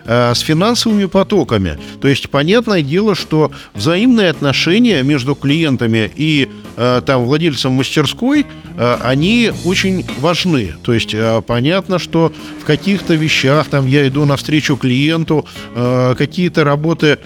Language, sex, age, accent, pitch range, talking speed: Russian, male, 50-69, native, 135-175 Hz, 130 wpm